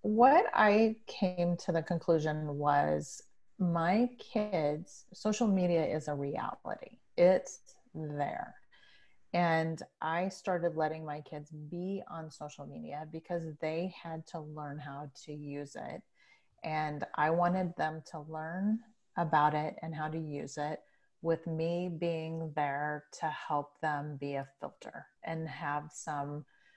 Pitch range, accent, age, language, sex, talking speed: 150-170 Hz, American, 30-49, English, female, 135 wpm